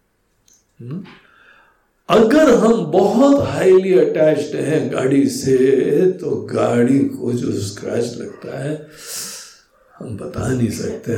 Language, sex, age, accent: Hindi, male, 60-79, native